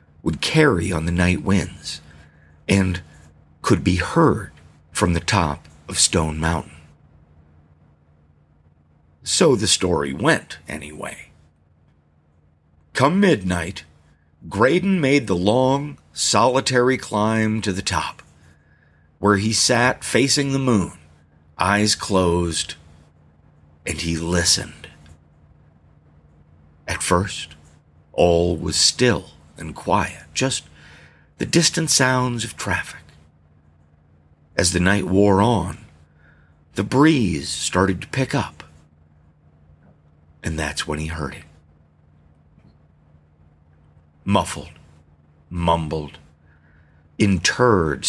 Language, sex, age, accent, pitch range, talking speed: English, male, 50-69, American, 75-95 Hz, 95 wpm